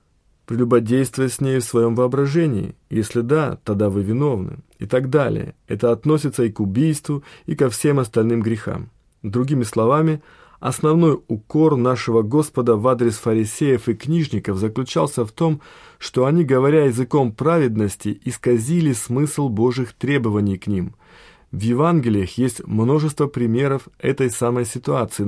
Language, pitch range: Russian, 110-145 Hz